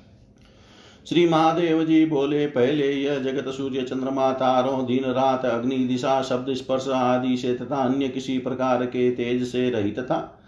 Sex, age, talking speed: male, 50-69, 155 wpm